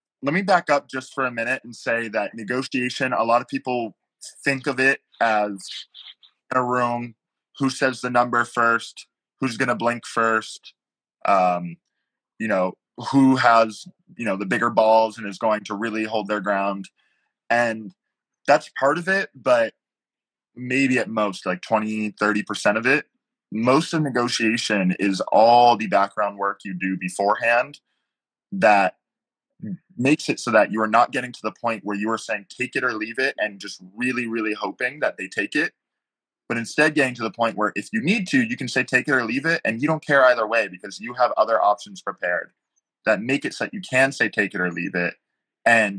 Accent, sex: American, male